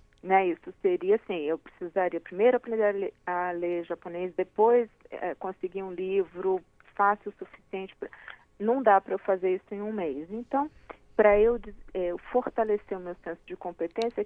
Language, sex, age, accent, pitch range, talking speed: Portuguese, female, 40-59, Brazilian, 175-210 Hz, 165 wpm